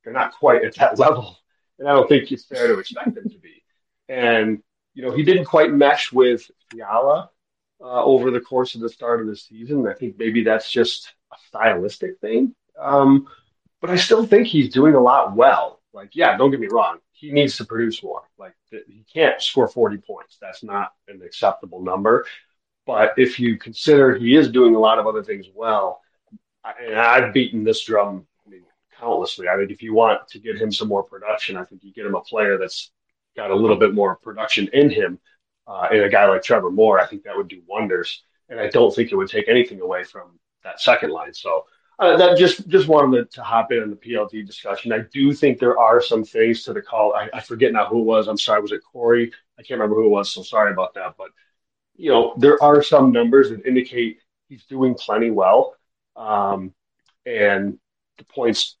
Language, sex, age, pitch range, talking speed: English, male, 30-49, 110-180 Hz, 215 wpm